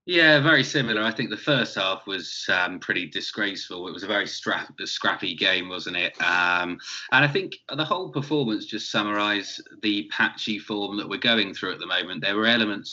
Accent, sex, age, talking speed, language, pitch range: British, male, 20-39, 195 wpm, English, 100-125 Hz